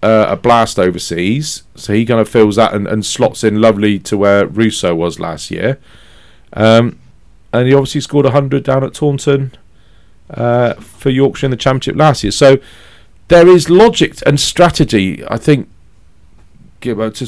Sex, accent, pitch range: male, British, 95-135 Hz